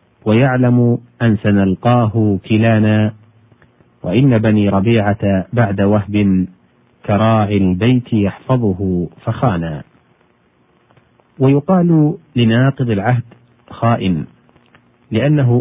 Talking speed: 70 wpm